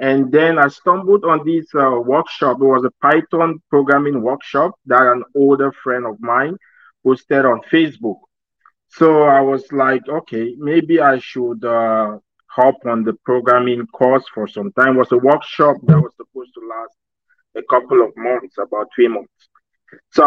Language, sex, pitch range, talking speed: English, male, 120-150 Hz, 170 wpm